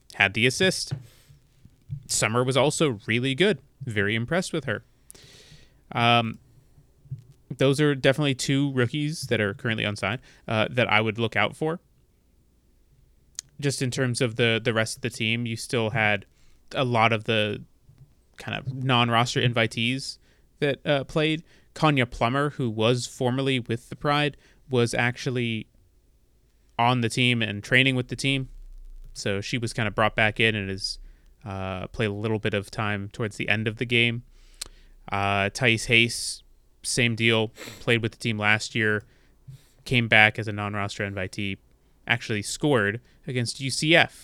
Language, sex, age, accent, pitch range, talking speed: English, male, 20-39, American, 105-135 Hz, 155 wpm